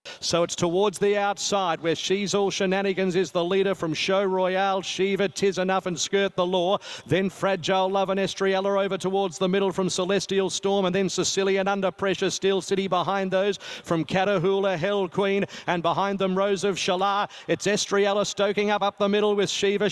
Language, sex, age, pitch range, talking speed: English, male, 40-59, 190-215 Hz, 185 wpm